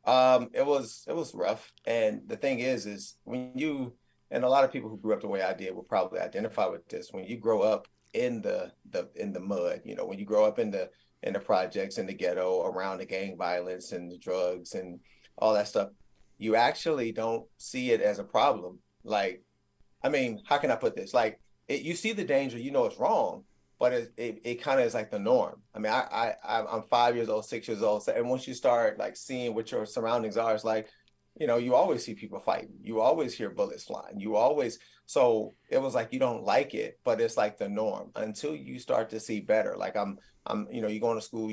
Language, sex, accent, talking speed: English, male, American, 235 wpm